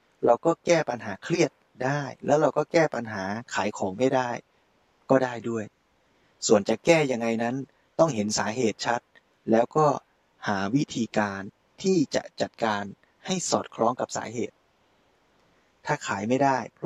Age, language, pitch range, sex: 20-39, Thai, 105-130 Hz, male